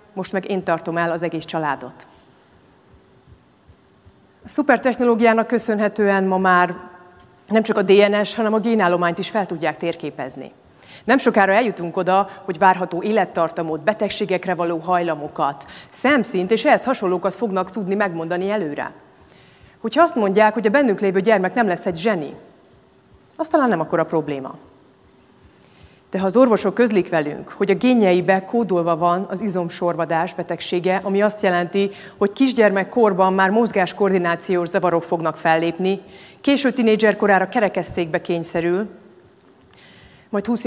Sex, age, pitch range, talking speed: female, 30-49, 175-215 Hz, 130 wpm